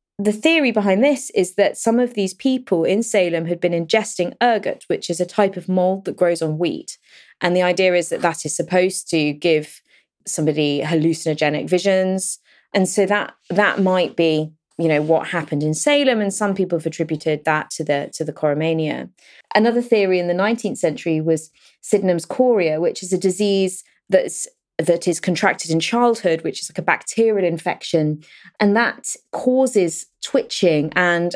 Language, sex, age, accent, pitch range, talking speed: English, female, 20-39, British, 160-205 Hz, 175 wpm